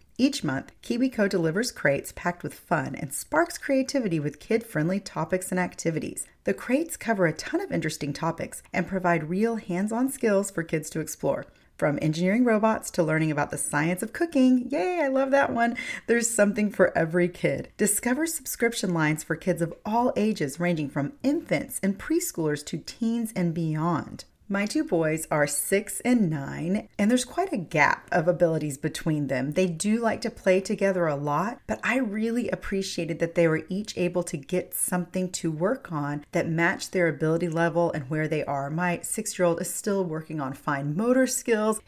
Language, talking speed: English, 180 wpm